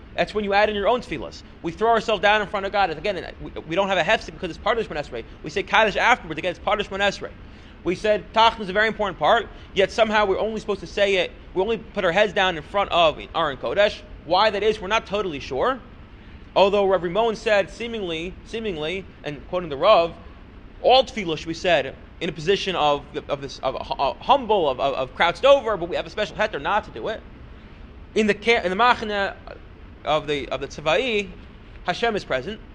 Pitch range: 170-220 Hz